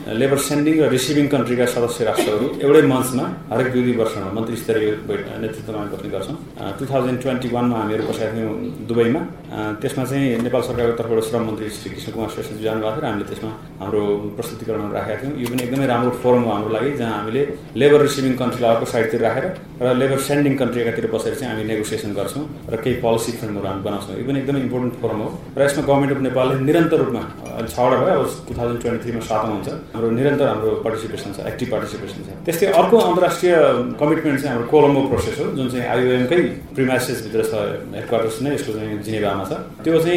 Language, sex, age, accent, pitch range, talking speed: English, male, 30-49, Indian, 110-140 Hz, 45 wpm